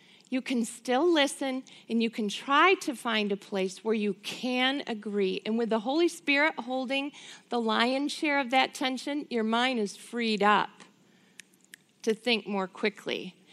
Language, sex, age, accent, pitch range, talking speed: English, female, 40-59, American, 200-265 Hz, 165 wpm